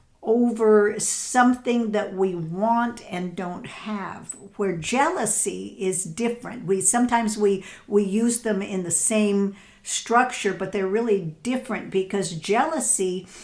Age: 50-69